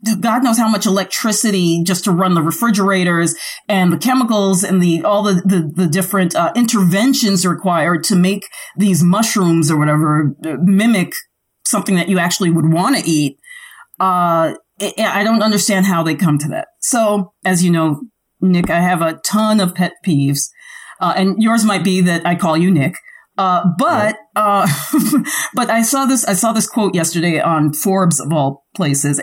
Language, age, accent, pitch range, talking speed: English, 40-59, American, 165-205 Hz, 175 wpm